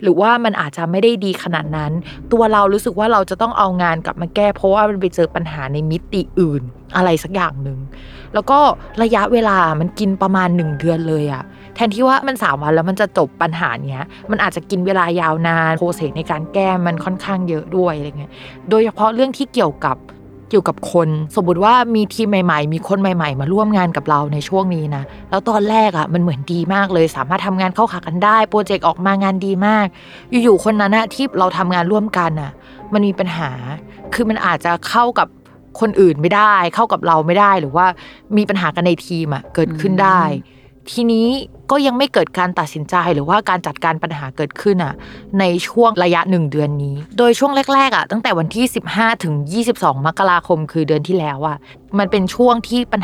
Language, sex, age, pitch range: Thai, female, 20-39, 160-210 Hz